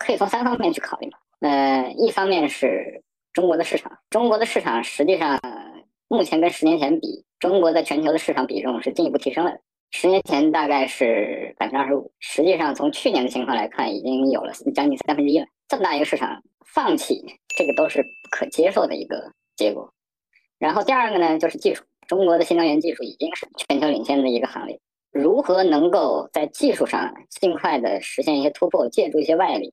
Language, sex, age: Chinese, male, 20-39